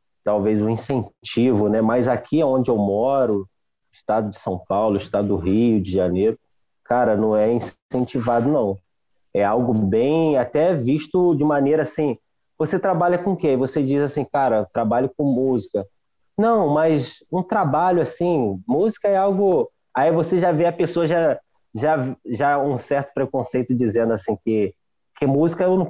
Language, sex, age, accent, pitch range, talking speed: Portuguese, male, 20-39, Brazilian, 125-180 Hz, 160 wpm